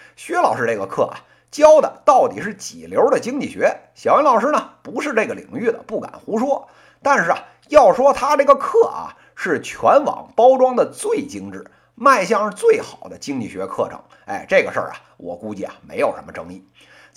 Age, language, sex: 50-69, Chinese, male